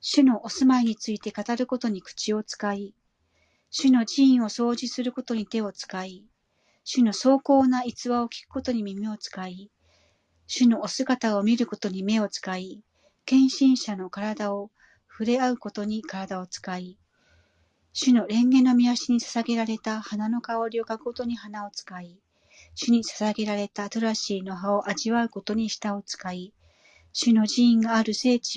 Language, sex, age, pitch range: Japanese, female, 40-59, 200-240 Hz